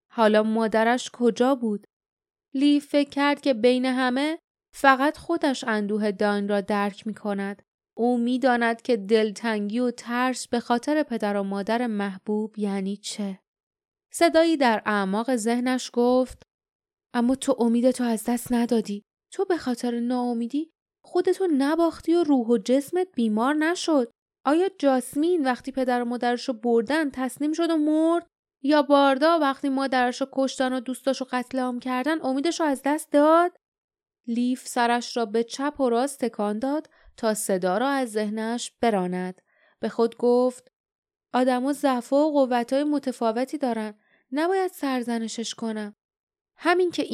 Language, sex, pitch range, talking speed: Persian, female, 225-285 Hz, 140 wpm